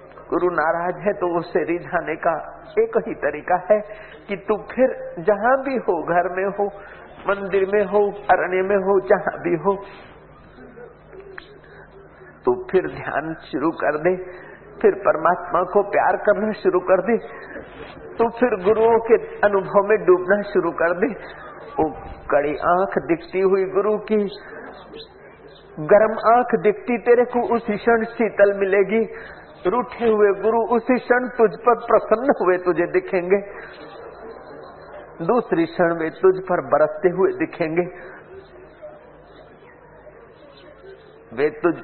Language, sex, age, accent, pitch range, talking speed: Hindi, male, 50-69, native, 180-225 Hz, 130 wpm